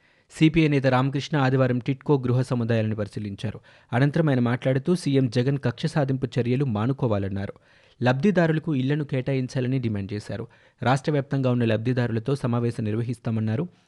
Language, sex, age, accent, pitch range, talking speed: Telugu, male, 30-49, native, 115-140 Hz, 120 wpm